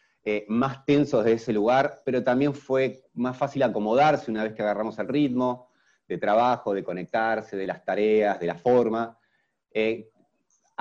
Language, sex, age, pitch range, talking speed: Spanish, male, 30-49, 110-140 Hz, 160 wpm